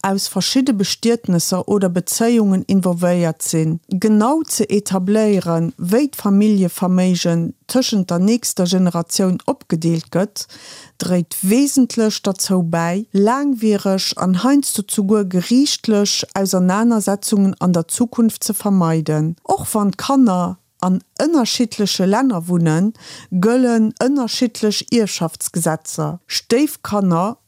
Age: 50-69